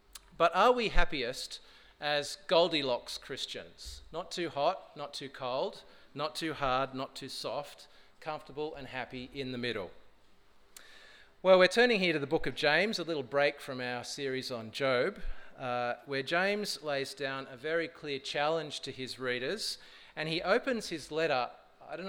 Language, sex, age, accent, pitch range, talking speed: English, male, 40-59, Australian, 135-165 Hz, 165 wpm